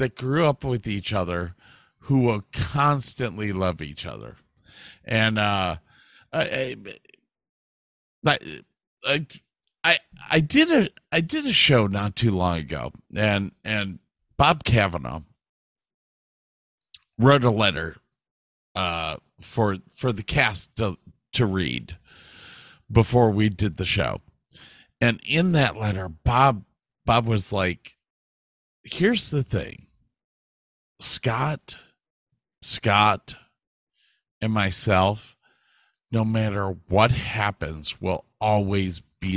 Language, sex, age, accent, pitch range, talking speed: English, male, 50-69, American, 95-125 Hz, 105 wpm